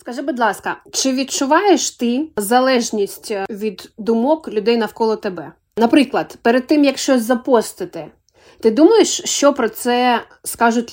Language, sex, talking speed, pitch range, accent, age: Ukrainian, female, 130 wpm, 225-285 Hz, native, 20-39